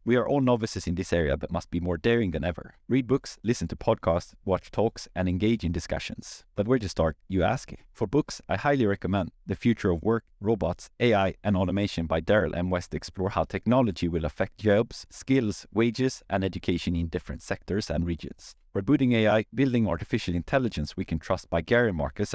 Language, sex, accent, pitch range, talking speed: English, male, Swedish, 85-110 Hz, 200 wpm